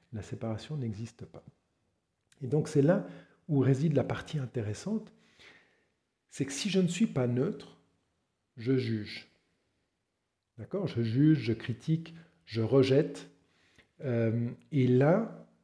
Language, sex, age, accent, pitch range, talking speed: French, male, 50-69, French, 115-150 Hz, 125 wpm